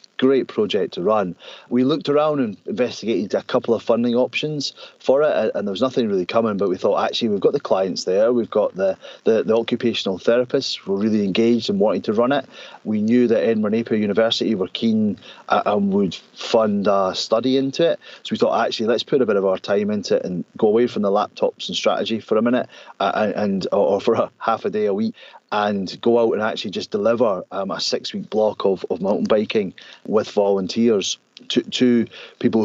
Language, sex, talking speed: English, male, 210 wpm